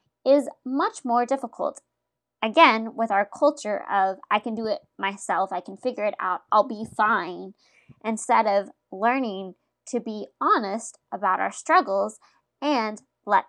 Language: English